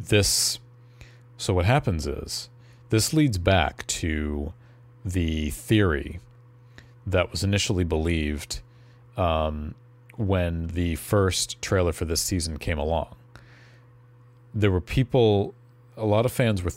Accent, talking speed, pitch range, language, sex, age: American, 120 wpm, 85-120 Hz, English, male, 40-59